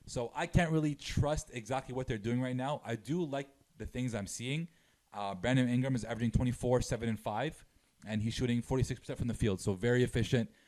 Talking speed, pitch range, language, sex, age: 210 wpm, 105-125 Hz, English, male, 20-39